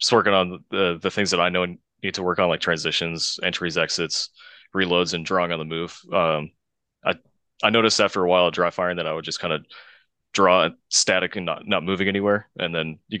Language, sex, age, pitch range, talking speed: English, male, 20-39, 85-95 Hz, 225 wpm